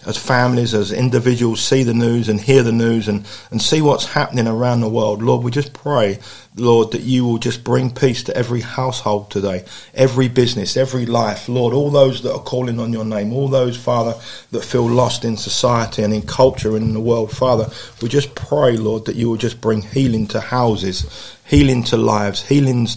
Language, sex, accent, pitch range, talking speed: English, male, British, 110-125 Hz, 205 wpm